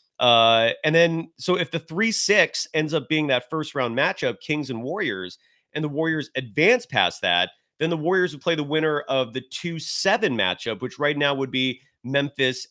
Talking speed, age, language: 190 wpm, 30-49, English